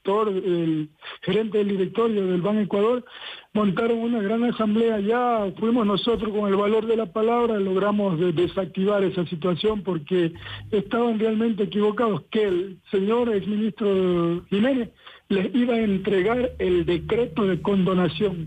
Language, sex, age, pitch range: Spanish, male, 60-79, 185-225 Hz